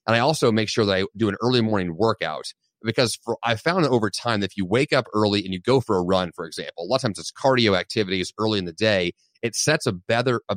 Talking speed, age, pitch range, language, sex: 260 wpm, 30-49, 100-130 Hz, English, male